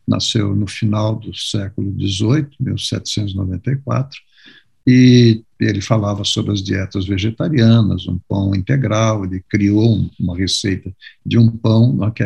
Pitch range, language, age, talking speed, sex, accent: 105-140 Hz, Portuguese, 60-79, 120 wpm, male, Brazilian